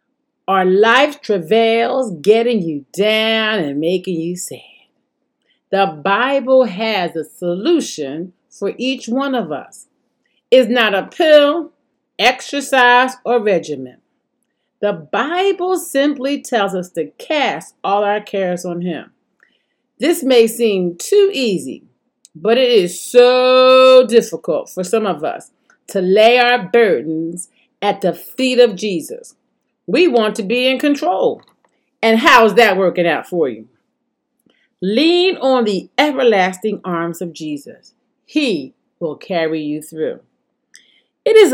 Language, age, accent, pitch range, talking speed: English, 40-59, American, 190-260 Hz, 130 wpm